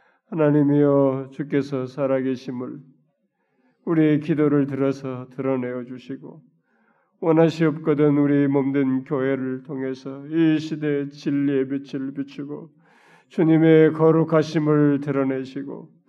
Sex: male